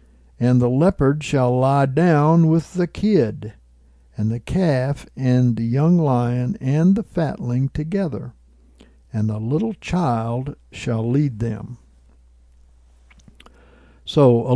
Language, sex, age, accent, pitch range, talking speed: English, male, 60-79, American, 110-145 Hz, 120 wpm